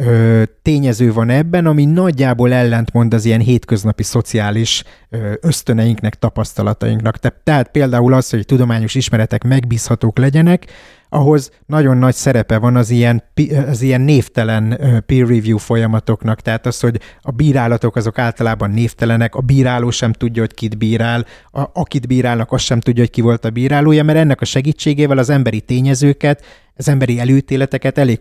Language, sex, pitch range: Hungarian, male, 115-135 Hz